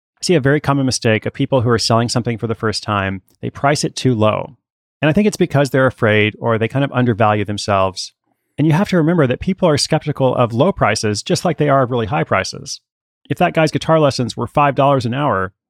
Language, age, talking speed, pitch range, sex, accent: English, 30-49, 240 wpm, 110-145 Hz, male, American